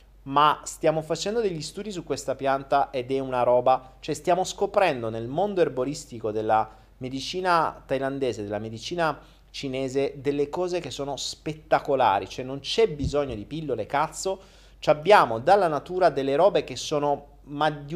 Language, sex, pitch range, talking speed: Italian, male, 115-170 Hz, 150 wpm